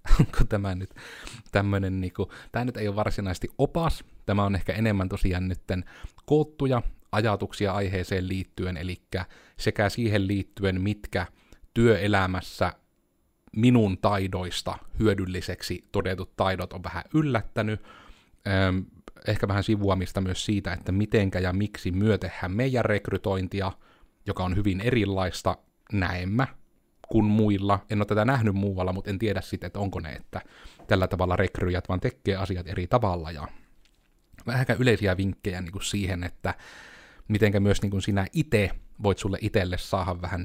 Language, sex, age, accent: Finnish, male, 30-49, native